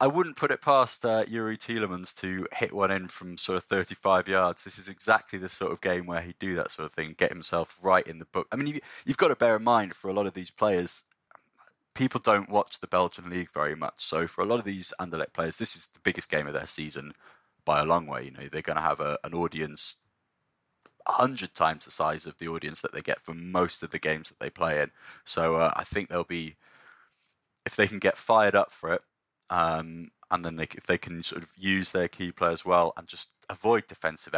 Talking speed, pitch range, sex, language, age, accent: 245 wpm, 80-95 Hz, male, English, 20-39, British